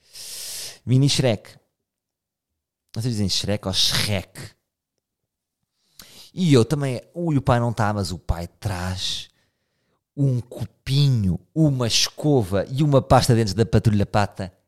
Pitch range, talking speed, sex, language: 105-145 Hz, 125 wpm, male, Portuguese